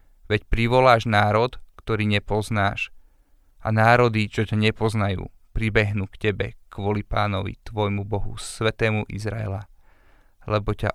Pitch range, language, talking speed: 100-115 Hz, Slovak, 115 wpm